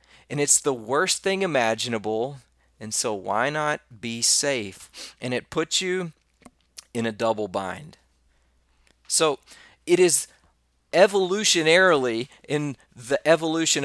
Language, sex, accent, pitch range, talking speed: English, male, American, 110-135 Hz, 115 wpm